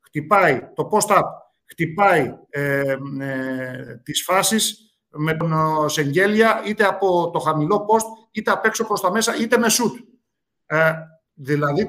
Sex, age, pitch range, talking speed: male, 50-69, 145-205 Hz, 120 wpm